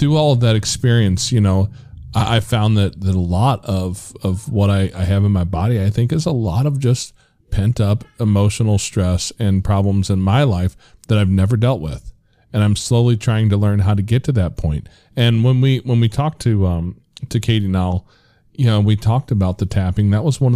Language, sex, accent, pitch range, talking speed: English, male, American, 100-125 Hz, 220 wpm